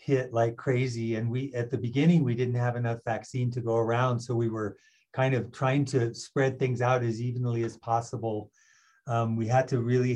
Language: English